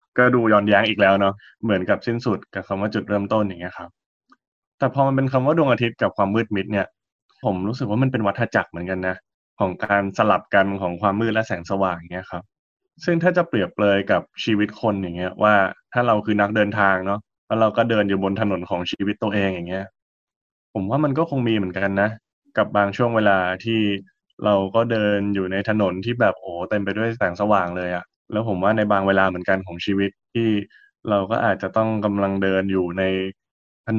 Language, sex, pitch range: Thai, male, 95-110 Hz